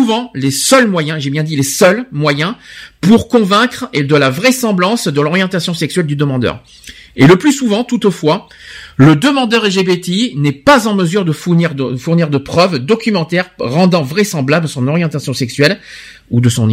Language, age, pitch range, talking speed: French, 50-69, 155-235 Hz, 170 wpm